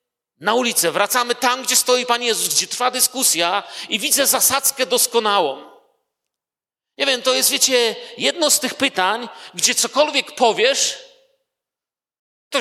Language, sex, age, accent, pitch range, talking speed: Polish, male, 40-59, native, 170-265 Hz, 135 wpm